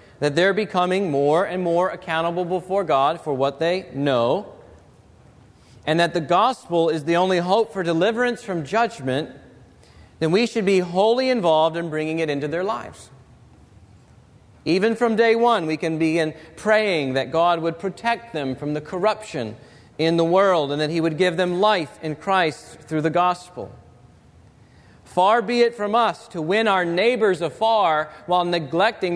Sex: male